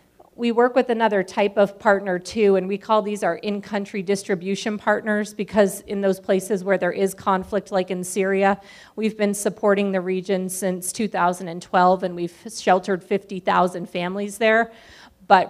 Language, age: English, 40-59